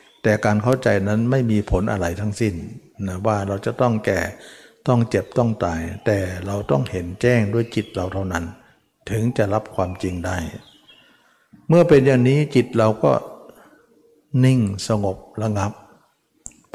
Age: 60-79